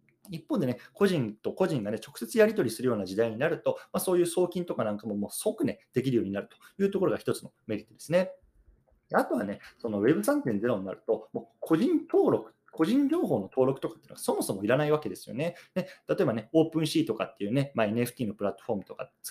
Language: Japanese